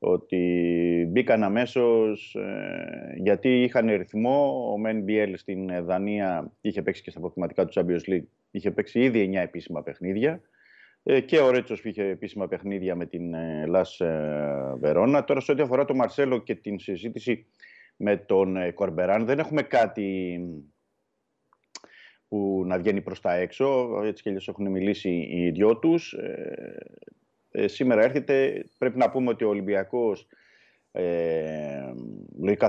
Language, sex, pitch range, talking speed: Greek, male, 90-115 Hz, 145 wpm